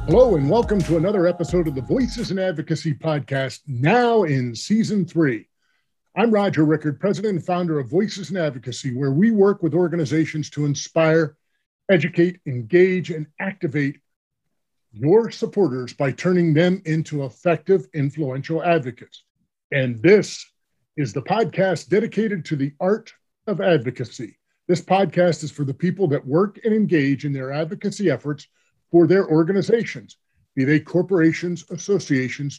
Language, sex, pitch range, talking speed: English, male, 145-190 Hz, 145 wpm